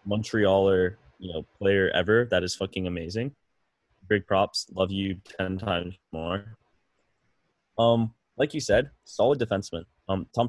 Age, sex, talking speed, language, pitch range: 10-29, male, 135 wpm, English, 95-115 Hz